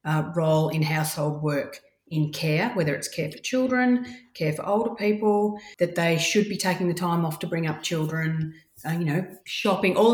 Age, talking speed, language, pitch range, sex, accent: 40-59, 195 wpm, English, 150-185 Hz, female, Australian